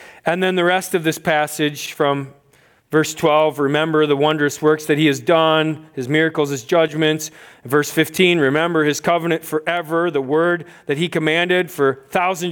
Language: English